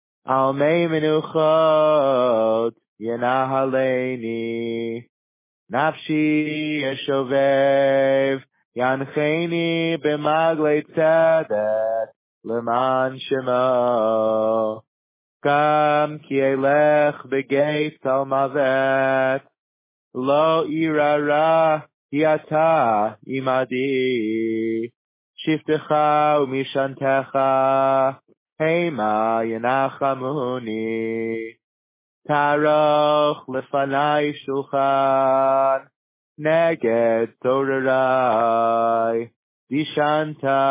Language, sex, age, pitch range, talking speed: English, male, 20-39, 125-150 Hz, 45 wpm